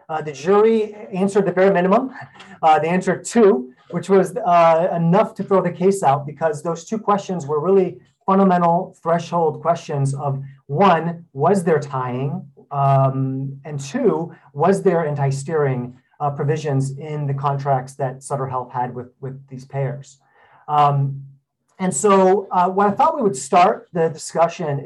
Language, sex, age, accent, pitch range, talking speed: English, male, 30-49, American, 140-190 Hz, 155 wpm